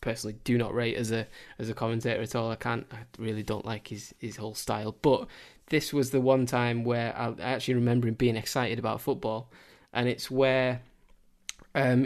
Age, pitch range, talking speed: 10-29, 115-130 Hz, 210 wpm